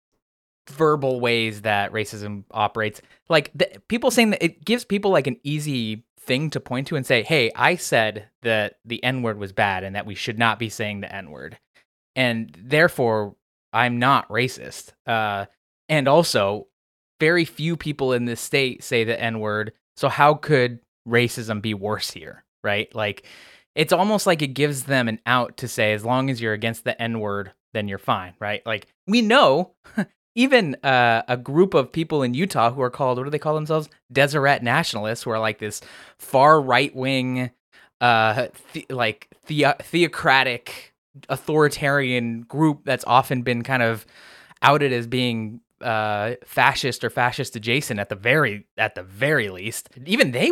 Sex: male